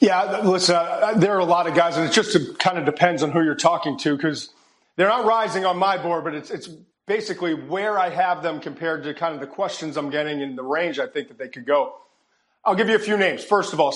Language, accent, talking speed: English, American, 260 wpm